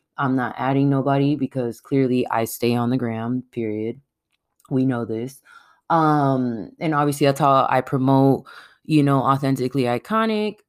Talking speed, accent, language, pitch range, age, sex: 145 wpm, American, English, 130-160 Hz, 20-39, female